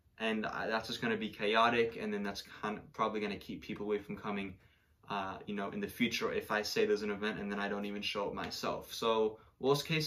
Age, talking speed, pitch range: 20-39, 255 wpm, 100-115 Hz